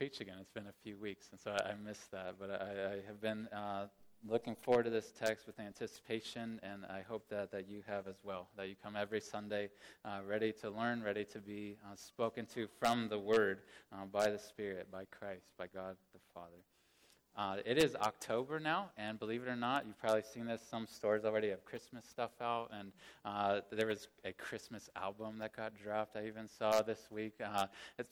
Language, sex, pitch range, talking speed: English, male, 100-110 Hz, 215 wpm